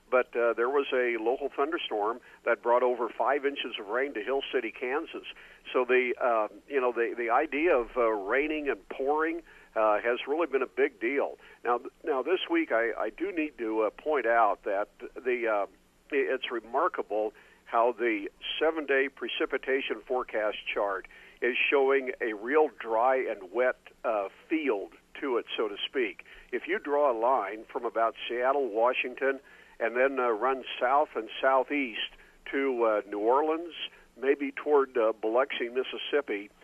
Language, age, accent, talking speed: English, 50-69, American, 165 wpm